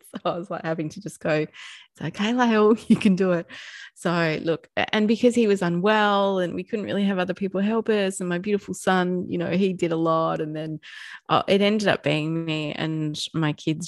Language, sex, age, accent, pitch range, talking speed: English, female, 20-39, Australian, 150-185 Hz, 215 wpm